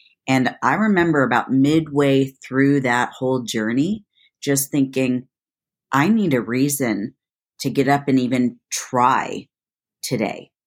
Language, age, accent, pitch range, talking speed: English, 40-59, American, 125-150 Hz, 125 wpm